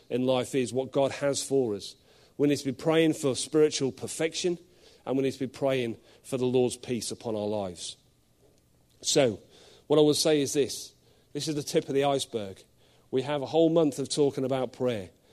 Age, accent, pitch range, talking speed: 40-59, British, 120-155 Hz, 205 wpm